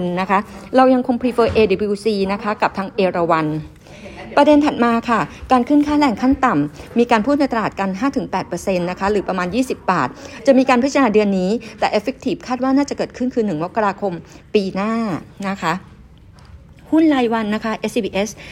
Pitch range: 185-245 Hz